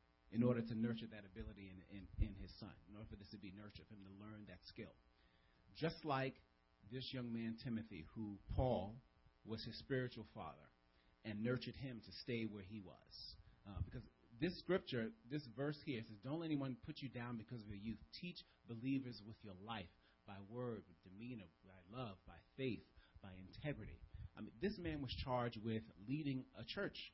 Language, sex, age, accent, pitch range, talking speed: English, male, 40-59, American, 95-135 Hz, 195 wpm